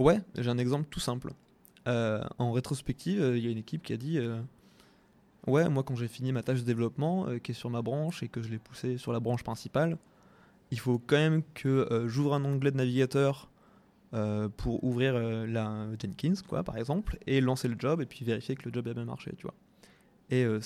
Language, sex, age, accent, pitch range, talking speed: French, male, 20-39, French, 120-145 Hz, 230 wpm